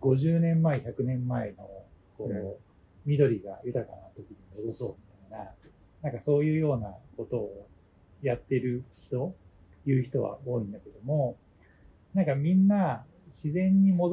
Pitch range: 105-160 Hz